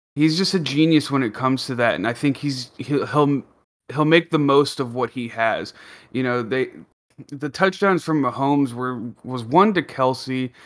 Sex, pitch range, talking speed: male, 120-140 Hz, 195 wpm